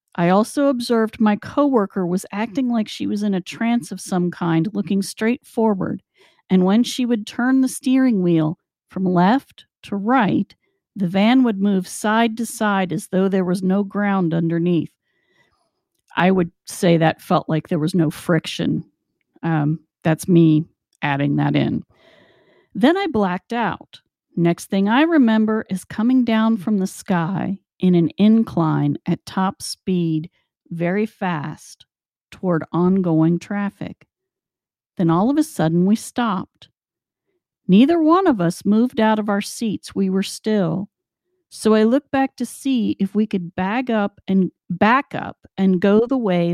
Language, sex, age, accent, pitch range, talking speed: English, female, 50-69, American, 175-230 Hz, 155 wpm